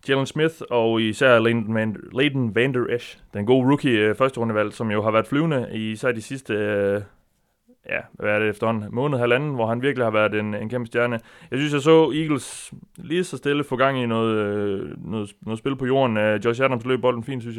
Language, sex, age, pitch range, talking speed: Danish, male, 30-49, 105-130 Hz, 215 wpm